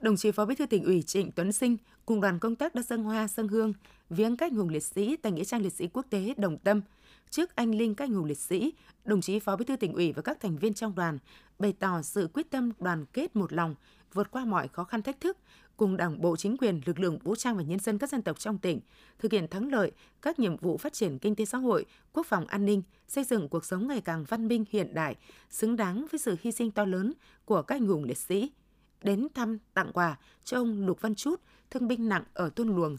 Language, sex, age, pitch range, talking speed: Vietnamese, female, 20-39, 180-235 Hz, 260 wpm